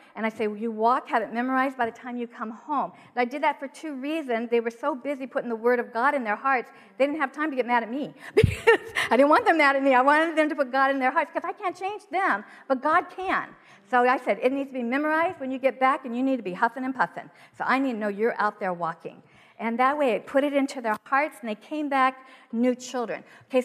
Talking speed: 285 wpm